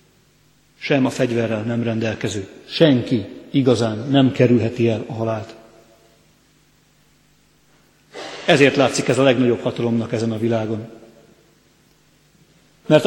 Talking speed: 100 wpm